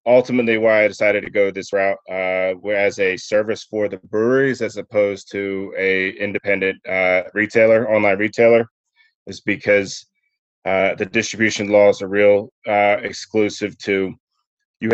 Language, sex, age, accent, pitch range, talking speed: English, male, 30-49, American, 100-120 Hz, 145 wpm